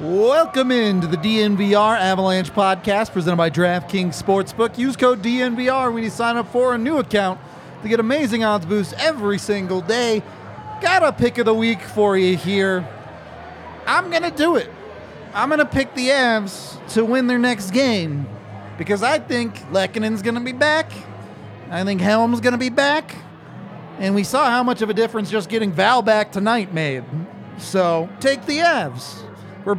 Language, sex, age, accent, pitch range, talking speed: English, male, 40-59, American, 175-230 Hz, 175 wpm